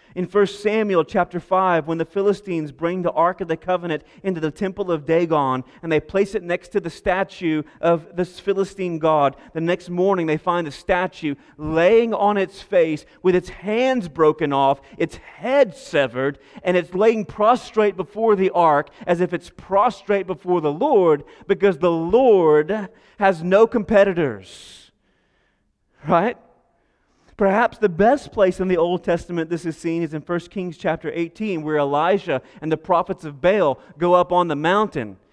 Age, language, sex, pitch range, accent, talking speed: 30-49, English, male, 170-215 Hz, American, 170 wpm